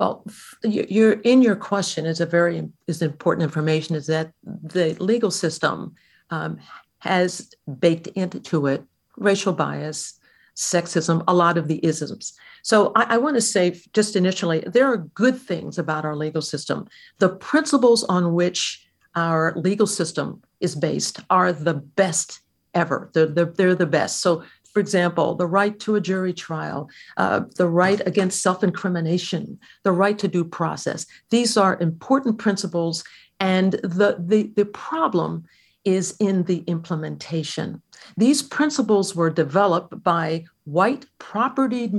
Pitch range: 170-215 Hz